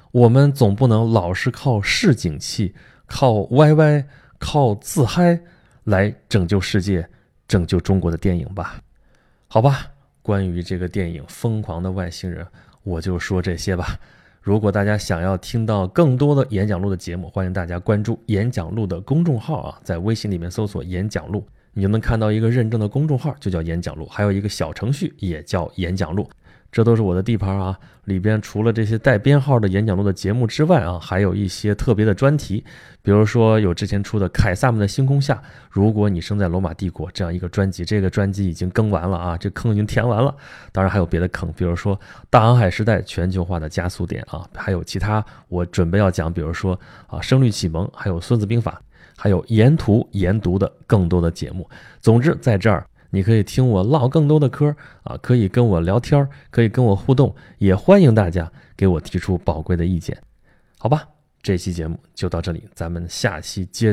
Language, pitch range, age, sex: Chinese, 90-120 Hz, 20-39, male